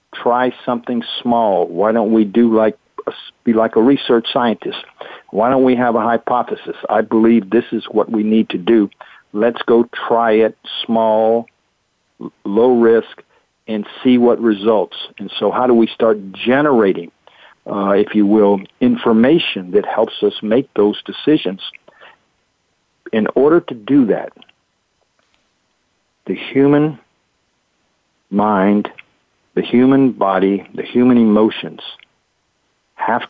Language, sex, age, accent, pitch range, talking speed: English, male, 50-69, American, 105-120 Hz, 130 wpm